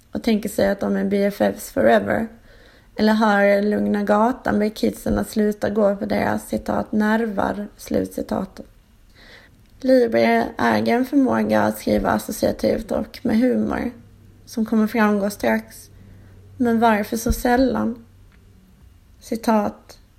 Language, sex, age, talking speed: Swedish, female, 30-49, 120 wpm